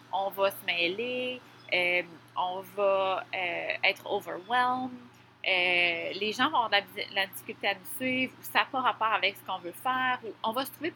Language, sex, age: French, female, 30-49